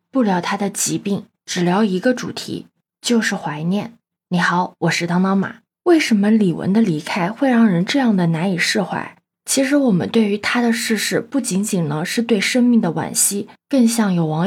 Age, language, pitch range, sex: 20-39, Chinese, 185-235 Hz, female